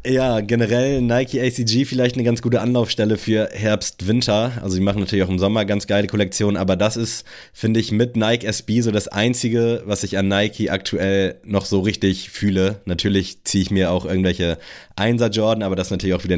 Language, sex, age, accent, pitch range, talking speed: German, male, 20-39, German, 95-105 Hz, 200 wpm